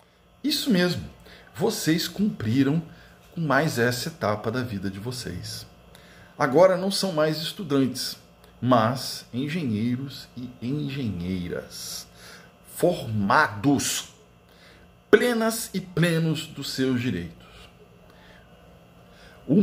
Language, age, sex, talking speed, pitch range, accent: Portuguese, 50-69, male, 90 wpm, 95-140 Hz, Brazilian